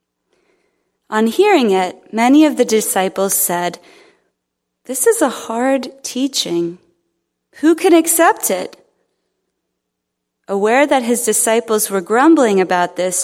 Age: 30-49